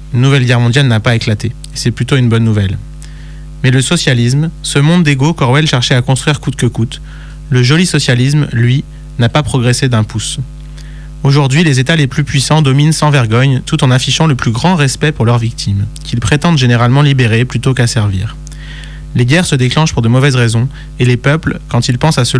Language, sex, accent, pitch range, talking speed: French, male, French, 125-150 Hz, 205 wpm